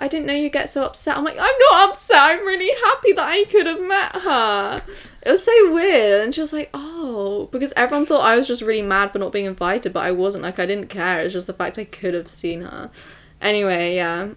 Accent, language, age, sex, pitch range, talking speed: British, English, 10-29, female, 180-290 Hz, 250 wpm